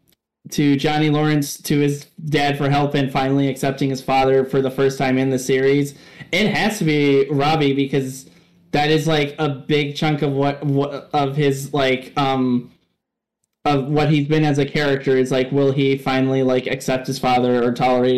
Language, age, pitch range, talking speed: English, 20-39, 130-150 Hz, 190 wpm